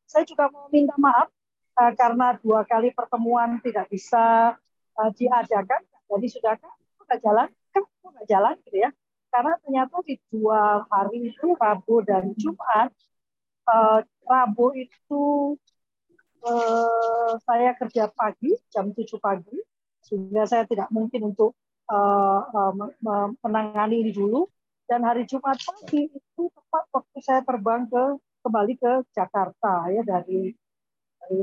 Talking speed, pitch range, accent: 125 wpm, 210-260 Hz, native